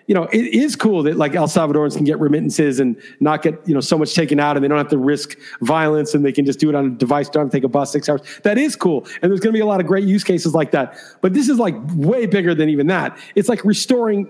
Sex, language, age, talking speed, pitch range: male, English, 40-59, 300 wpm, 165-215 Hz